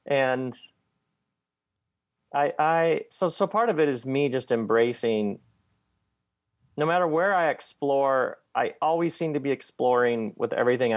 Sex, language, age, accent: male, English, 40-59, American